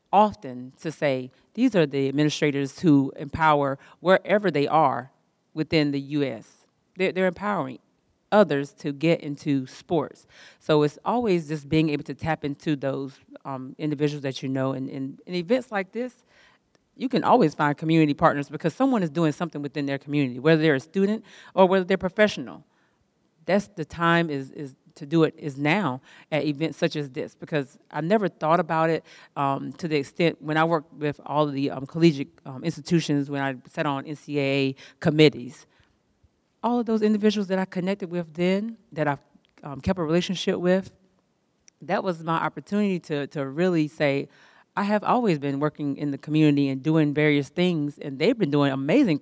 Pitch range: 145-180 Hz